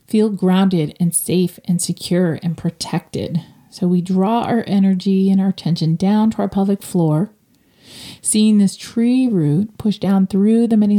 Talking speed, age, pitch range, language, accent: 165 wpm, 40-59, 180-215 Hz, English, American